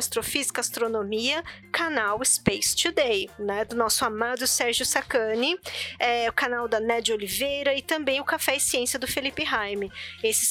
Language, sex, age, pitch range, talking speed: Portuguese, female, 20-39, 230-280 Hz, 160 wpm